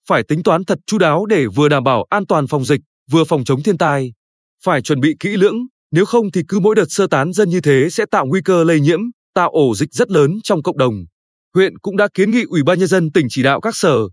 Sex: male